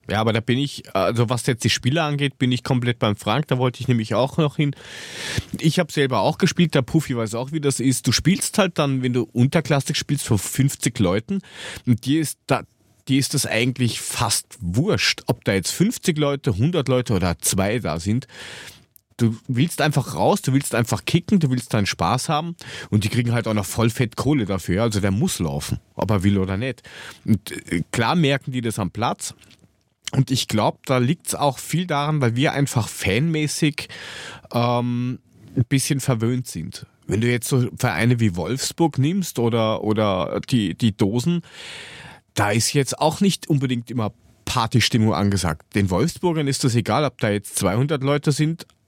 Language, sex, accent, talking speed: German, male, German, 190 wpm